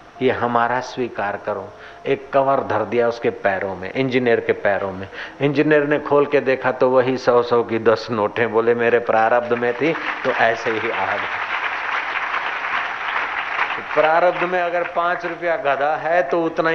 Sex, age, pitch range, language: male, 50-69, 115-135 Hz, Hindi